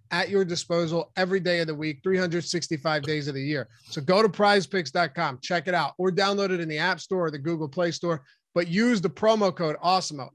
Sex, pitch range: male, 155-195 Hz